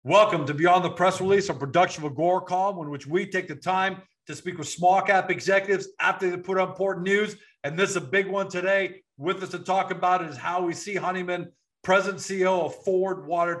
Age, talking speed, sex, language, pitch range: 50-69, 220 wpm, male, English, 150-185 Hz